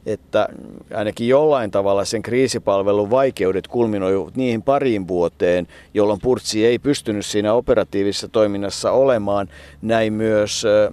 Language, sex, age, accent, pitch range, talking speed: Finnish, male, 50-69, native, 100-130 Hz, 115 wpm